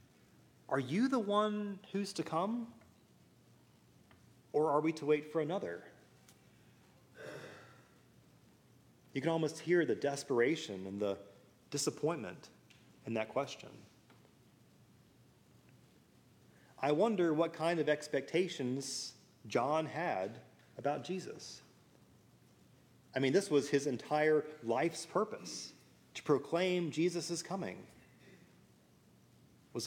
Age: 30-49